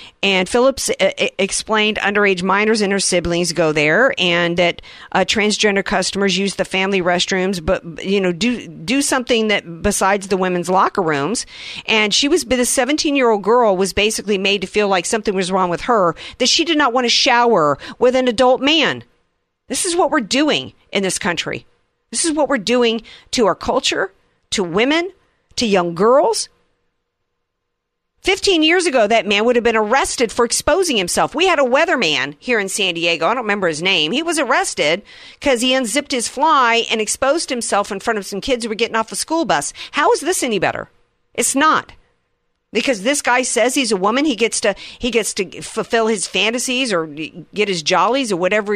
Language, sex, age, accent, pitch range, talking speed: English, female, 50-69, American, 190-260 Hz, 195 wpm